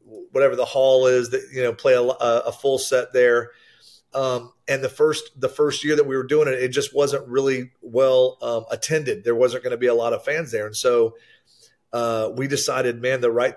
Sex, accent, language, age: male, American, English, 40-59